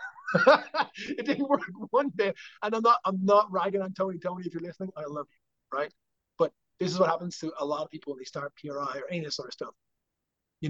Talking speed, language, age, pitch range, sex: 230 wpm, English, 30-49, 140-175 Hz, male